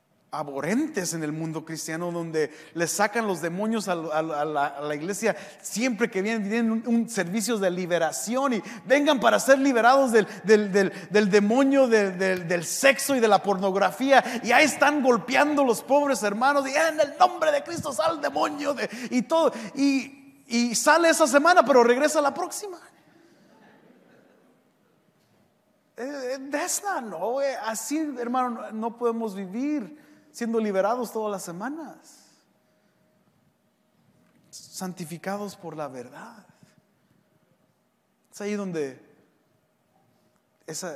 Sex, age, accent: male, 40-59, Mexican